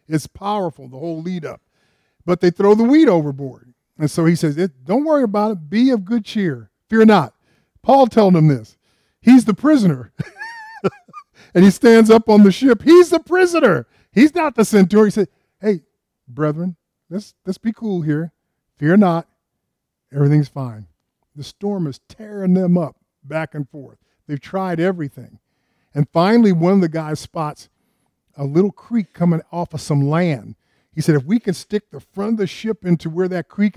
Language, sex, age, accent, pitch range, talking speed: English, male, 50-69, American, 145-205 Hz, 180 wpm